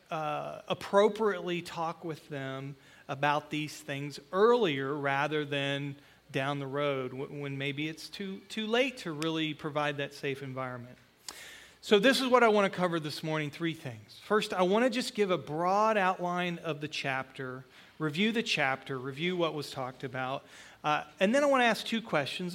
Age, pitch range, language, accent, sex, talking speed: 40-59, 140-195 Hz, English, American, male, 180 wpm